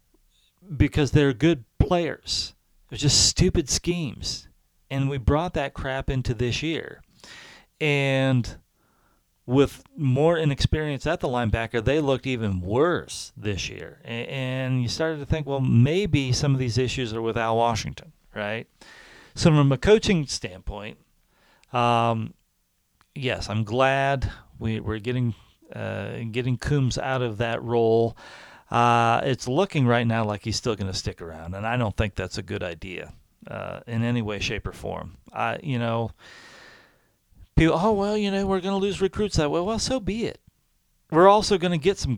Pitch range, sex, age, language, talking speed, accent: 110-145 Hz, male, 40-59, English, 165 wpm, American